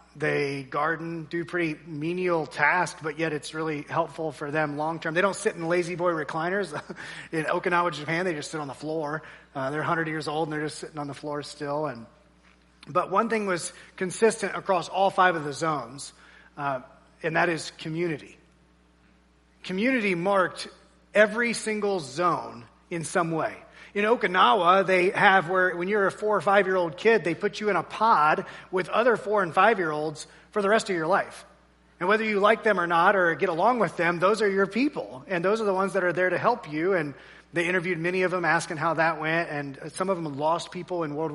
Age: 30-49